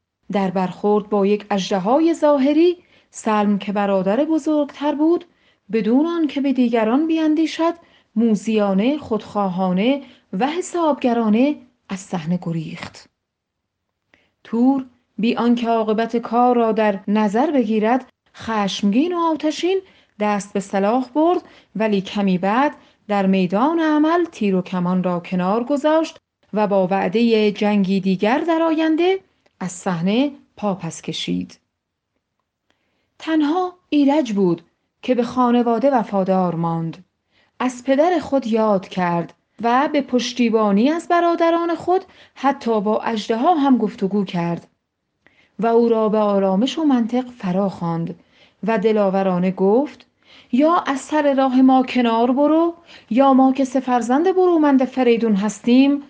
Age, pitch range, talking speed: 30-49, 200-285 Hz, 125 wpm